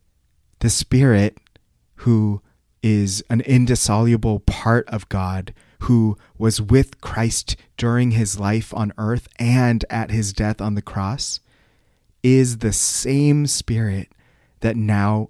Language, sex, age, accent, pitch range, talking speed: English, male, 30-49, American, 100-120 Hz, 120 wpm